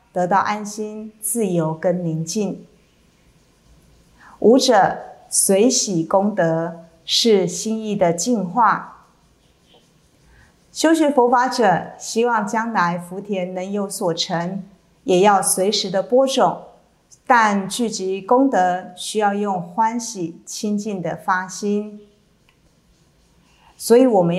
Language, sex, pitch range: Chinese, female, 185-225 Hz